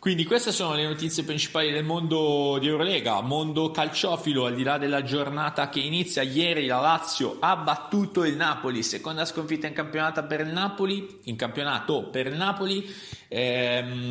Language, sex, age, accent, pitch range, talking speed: Italian, male, 30-49, native, 115-155 Hz, 160 wpm